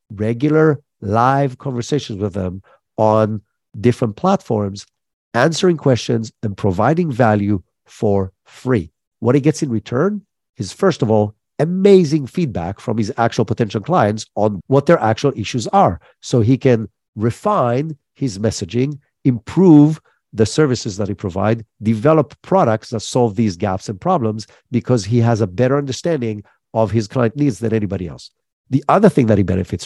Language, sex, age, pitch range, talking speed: English, male, 50-69, 105-135 Hz, 155 wpm